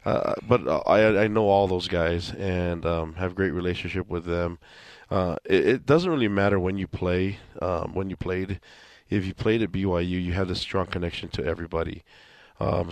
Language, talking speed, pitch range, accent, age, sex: English, 195 wpm, 90-105 Hz, American, 20-39, male